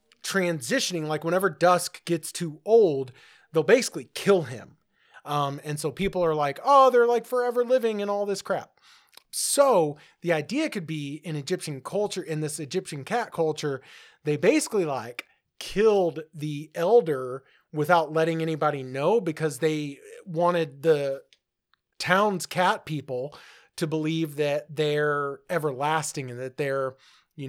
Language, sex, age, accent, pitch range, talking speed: English, male, 30-49, American, 145-195 Hz, 140 wpm